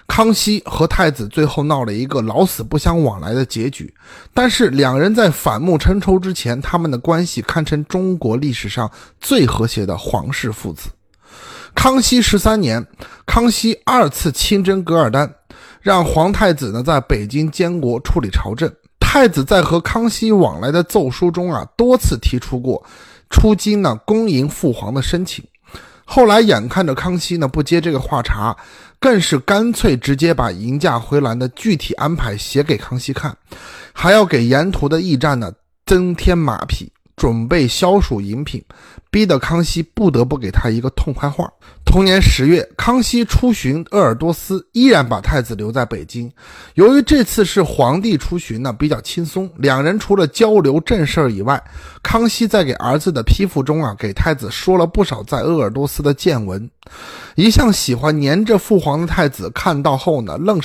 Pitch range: 125-190 Hz